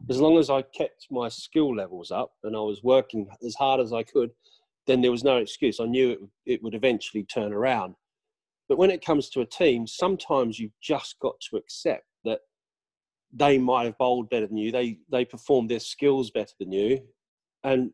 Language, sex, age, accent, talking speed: English, male, 40-59, British, 205 wpm